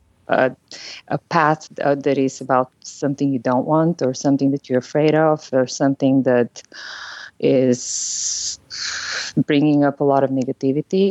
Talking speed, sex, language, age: 140 wpm, female, English, 20-39